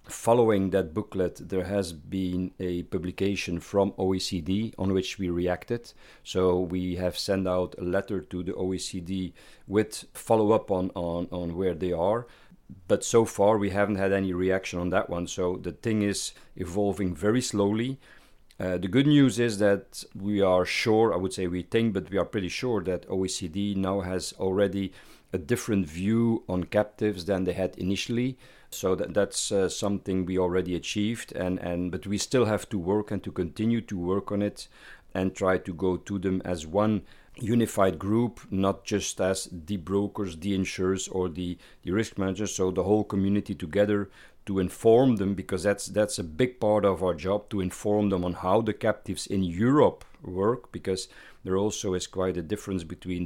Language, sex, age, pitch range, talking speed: English, male, 50-69, 90-105 Hz, 185 wpm